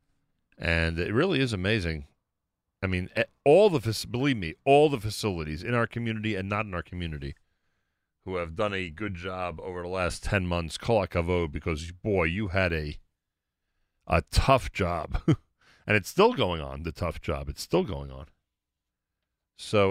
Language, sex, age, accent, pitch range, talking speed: English, male, 40-59, American, 80-100 Hz, 170 wpm